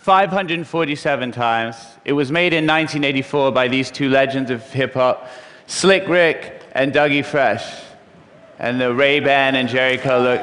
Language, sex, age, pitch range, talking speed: Russian, male, 30-49, 125-160 Hz, 140 wpm